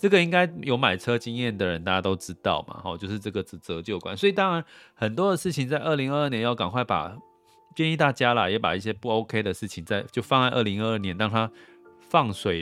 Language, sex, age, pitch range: Chinese, male, 30-49, 95-135 Hz